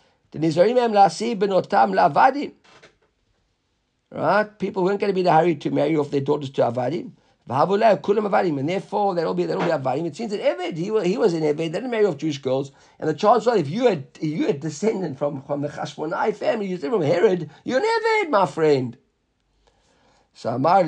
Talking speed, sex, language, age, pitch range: 195 wpm, male, English, 50-69, 150-200 Hz